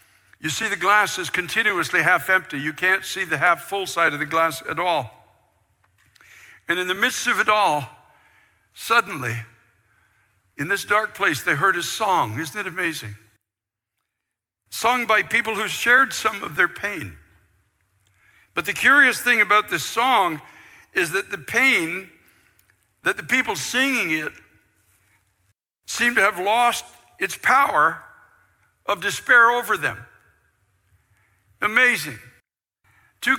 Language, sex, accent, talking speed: English, male, American, 135 wpm